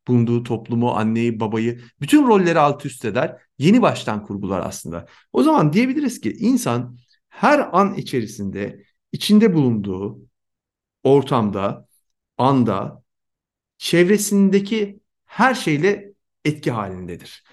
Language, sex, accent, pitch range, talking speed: Turkish, male, native, 115-195 Hz, 105 wpm